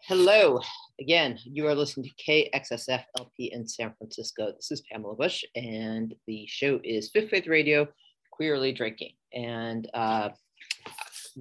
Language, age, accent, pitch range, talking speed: English, 40-59, American, 120-150 Hz, 135 wpm